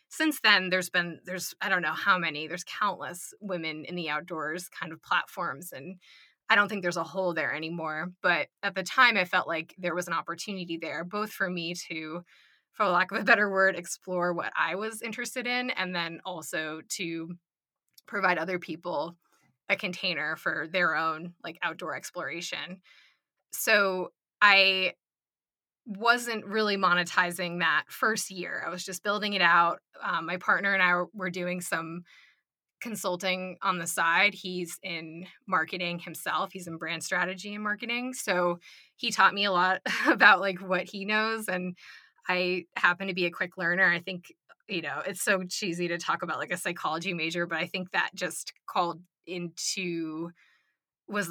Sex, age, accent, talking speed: female, 20-39, American, 175 wpm